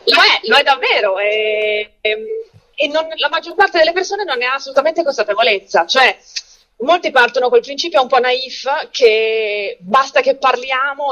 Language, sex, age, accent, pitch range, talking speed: Italian, female, 30-49, native, 235-395 Hz, 150 wpm